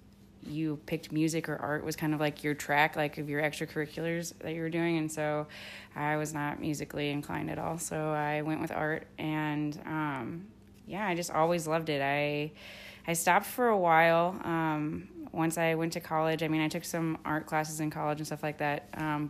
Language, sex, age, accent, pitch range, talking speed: English, female, 20-39, American, 150-165 Hz, 210 wpm